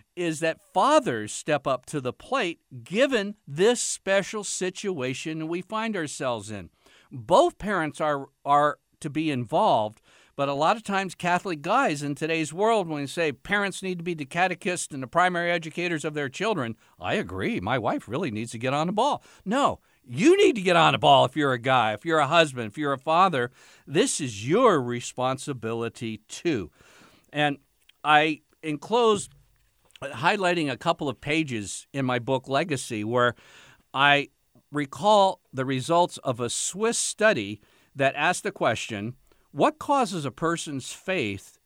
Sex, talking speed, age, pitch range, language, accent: male, 165 wpm, 60-79, 130-185 Hz, English, American